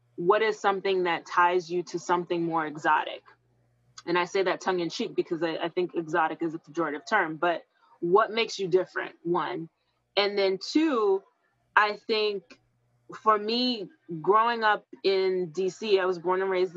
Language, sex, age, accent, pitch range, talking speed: English, female, 20-39, American, 165-210 Hz, 170 wpm